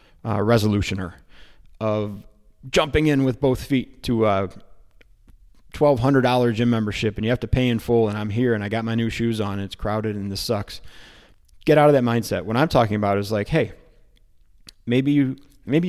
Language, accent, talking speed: English, American, 200 wpm